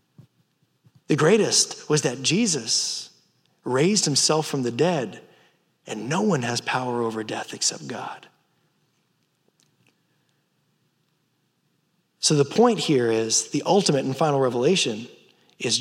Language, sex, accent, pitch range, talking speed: English, male, American, 130-170 Hz, 115 wpm